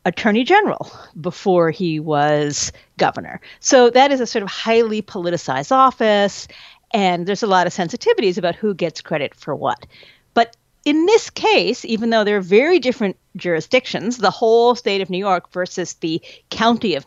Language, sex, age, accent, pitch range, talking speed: English, female, 40-59, American, 170-235 Hz, 170 wpm